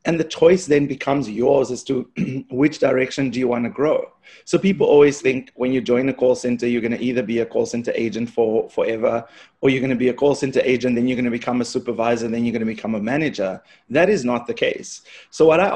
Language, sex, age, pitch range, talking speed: English, male, 30-49, 120-140 Hz, 255 wpm